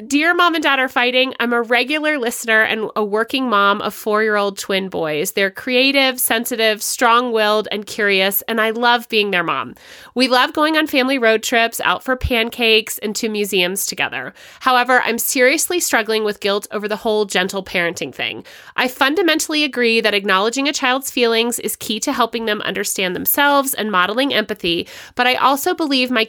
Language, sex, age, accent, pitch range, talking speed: English, female, 30-49, American, 210-265 Hz, 180 wpm